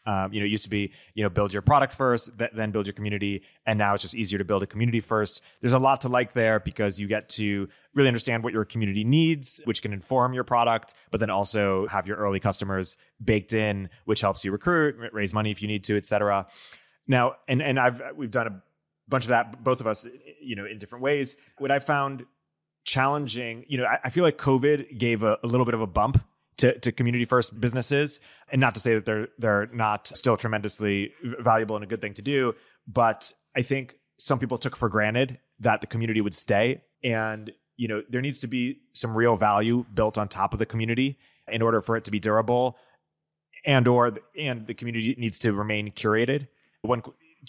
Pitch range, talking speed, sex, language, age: 105-125 Hz, 225 wpm, male, English, 20-39